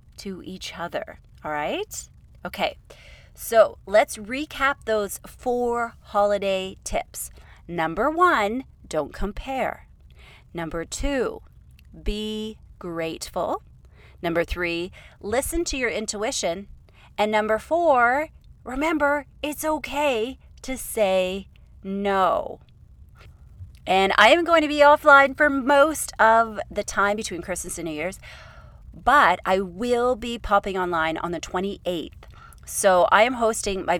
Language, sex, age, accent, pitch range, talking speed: English, female, 30-49, American, 180-240 Hz, 120 wpm